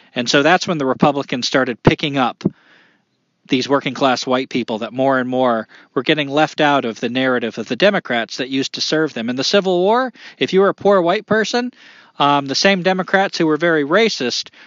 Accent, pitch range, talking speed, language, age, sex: American, 125-170 Hz, 210 wpm, English, 40-59, male